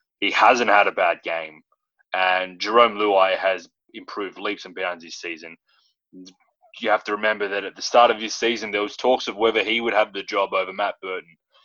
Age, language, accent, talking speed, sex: 20-39, English, Australian, 205 wpm, male